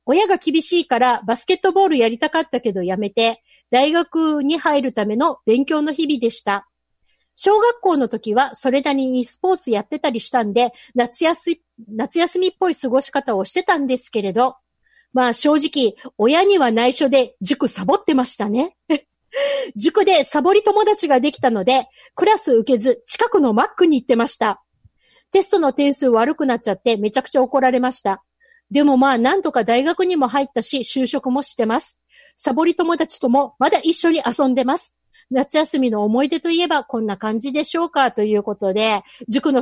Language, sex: Japanese, female